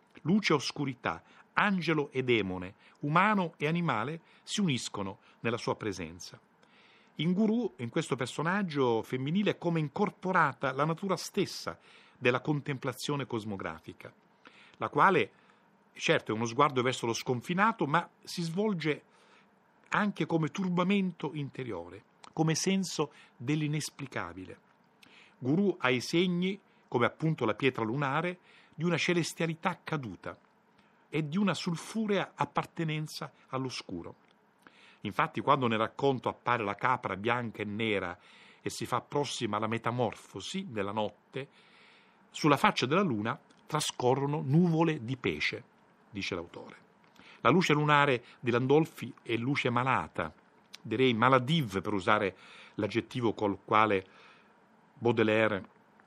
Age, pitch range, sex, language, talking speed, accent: 50-69, 120-180 Hz, male, Italian, 120 wpm, native